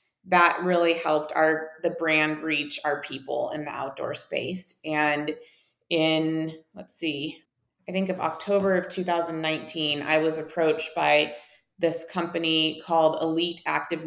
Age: 20-39